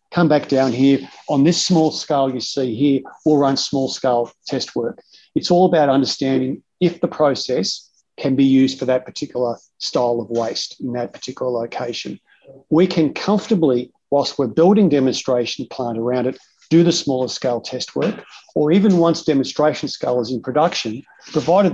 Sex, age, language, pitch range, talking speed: male, 50-69, English, 125-155 Hz, 170 wpm